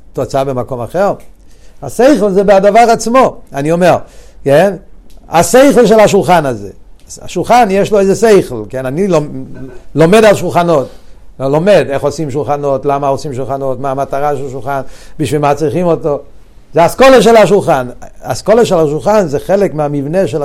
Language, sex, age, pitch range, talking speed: Hebrew, male, 60-79, 145-205 Hz, 95 wpm